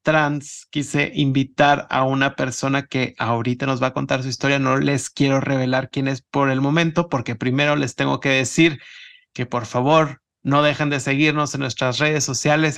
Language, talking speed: Spanish, 190 wpm